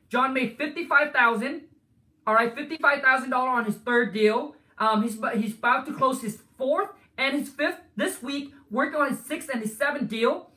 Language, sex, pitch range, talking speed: English, male, 225-280 Hz, 170 wpm